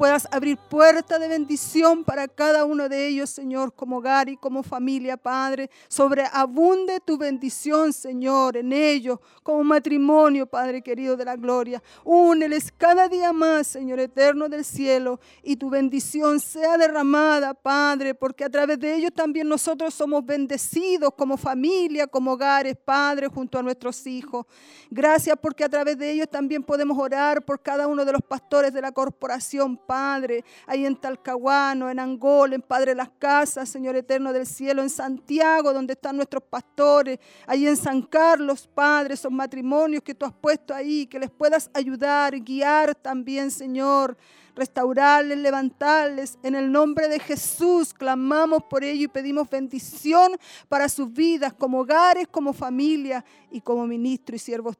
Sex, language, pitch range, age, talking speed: female, Spanish, 265-300 Hz, 50-69, 160 wpm